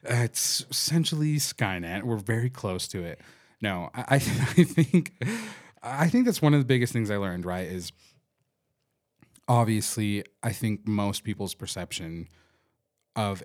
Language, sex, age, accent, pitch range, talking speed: English, male, 30-49, American, 90-115 Hz, 150 wpm